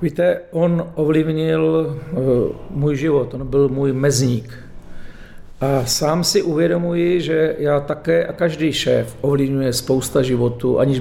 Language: Czech